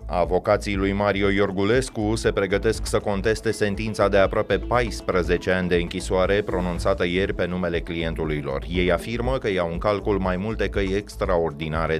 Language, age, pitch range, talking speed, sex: Romanian, 30-49, 90-110 Hz, 155 wpm, male